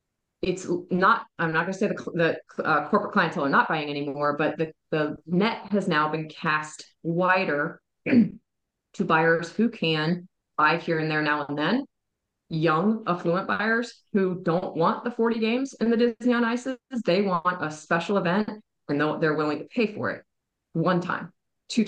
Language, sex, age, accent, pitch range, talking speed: English, female, 30-49, American, 160-205 Hz, 180 wpm